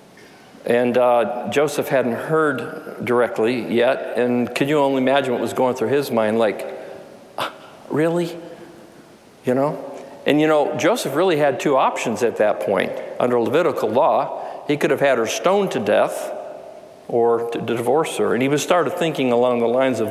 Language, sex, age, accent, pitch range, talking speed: English, male, 50-69, American, 125-155 Hz, 170 wpm